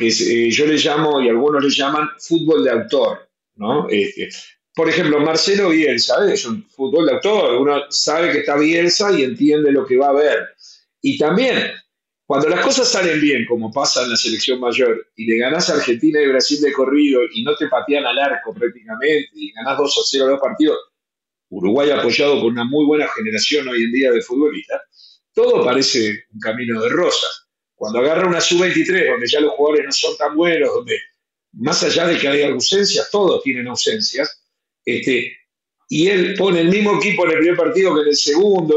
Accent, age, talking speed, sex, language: Argentinian, 50-69, 195 wpm, male, English